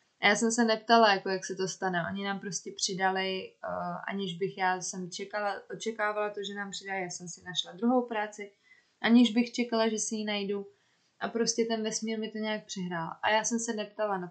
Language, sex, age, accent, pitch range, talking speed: Czech, female, 20-39, native, 190-225 Hz, 215 wpm